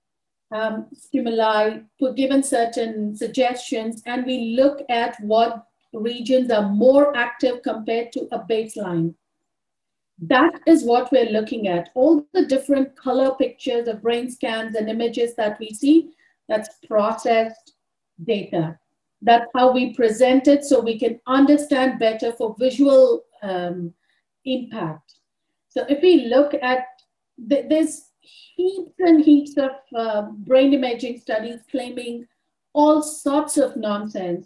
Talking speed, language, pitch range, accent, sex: 130 wpm, English, 225-280 Hz, Indian, female